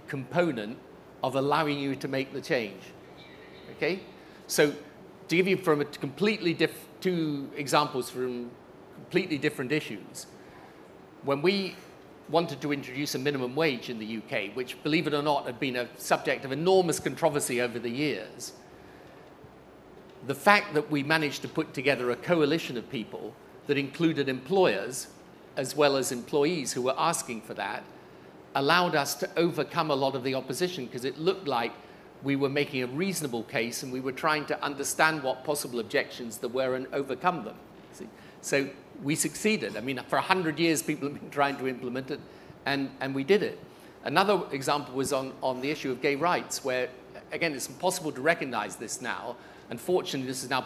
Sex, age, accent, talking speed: male, 50-69, British, 175 wpm